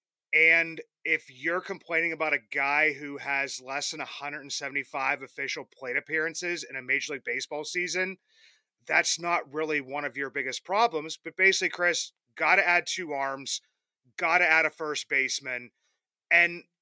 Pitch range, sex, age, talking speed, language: 145-175 Hz, male, 30-49, 155 wpm, English